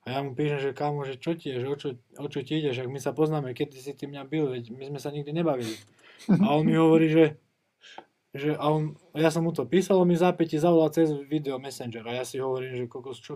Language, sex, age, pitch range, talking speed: Czech, male, 20-39, 140-165 Hz, 255 wpm